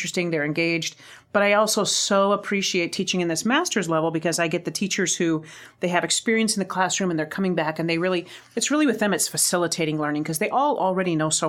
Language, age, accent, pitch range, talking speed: English, 40-59, American, 170-220 Hz, 235 wpm